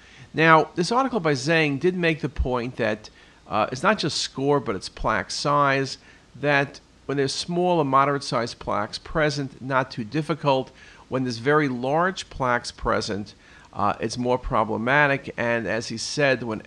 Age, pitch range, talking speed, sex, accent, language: 50-69, 120-155 Hz, 160 wpm, male, American, English